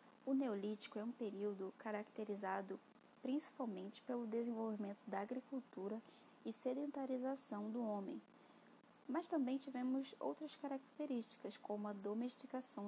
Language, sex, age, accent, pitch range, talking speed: Portuguese, female, 10-29, Brazilian, 220-270 Hz, 105 wpm